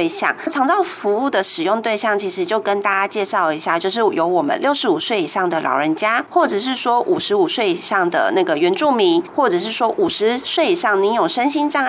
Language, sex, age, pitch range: Chinese, female, 30-49, 220-340 Hz